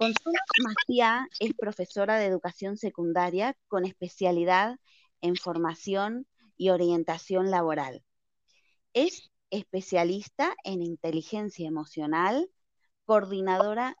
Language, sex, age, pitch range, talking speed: Spanish, female, 20-39, 180-255 Hz, 85 wpm